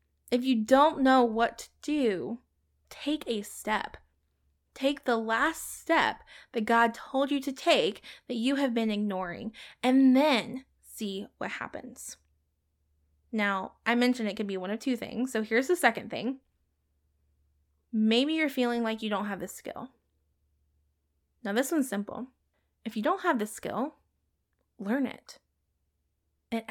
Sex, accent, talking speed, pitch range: female, American, 150 wpm, 185-260 Hz